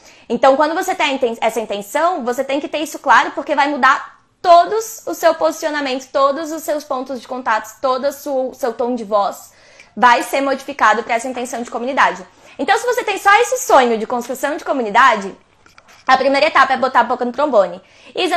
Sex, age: female, 20-39